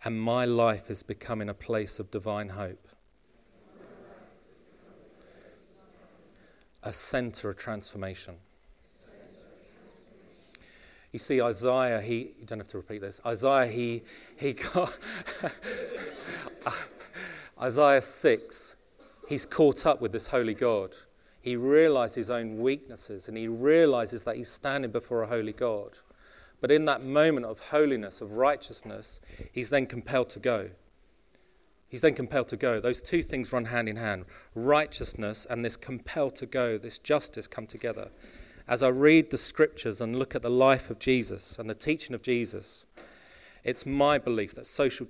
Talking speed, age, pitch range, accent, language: 140 wpm, 40-59, 110-135 Hz, British, English